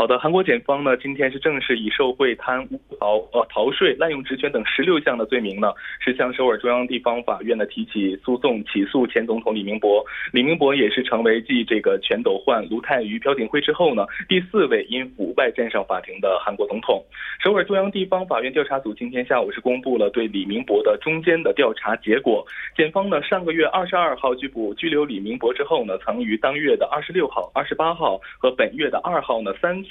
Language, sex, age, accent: Korean, male, 20-39, Chinese